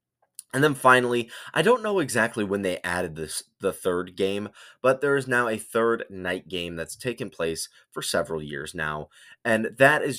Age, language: 20-39, English